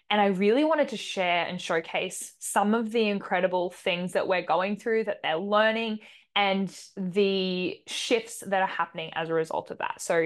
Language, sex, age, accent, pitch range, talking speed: English, female, 10-29, Australian, 180-220 Hz, 185 wpm